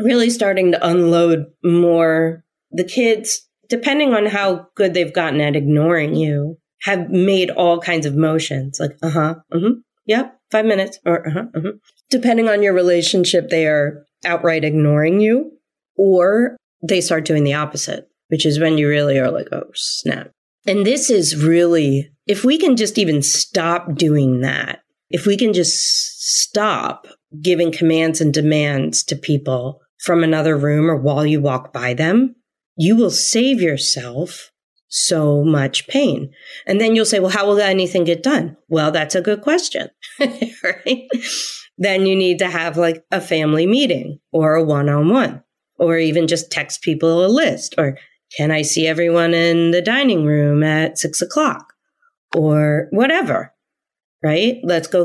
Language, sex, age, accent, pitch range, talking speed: English, female, 30-49, American, 155-205 Hz, 160 wpm